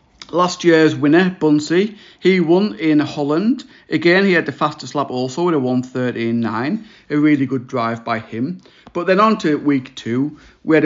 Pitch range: 130-160 Hz